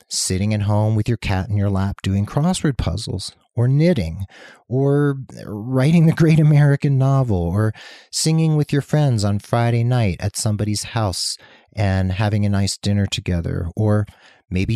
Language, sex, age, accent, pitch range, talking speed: English, male, 40-59, American, 95-130 Hz, 160 wpm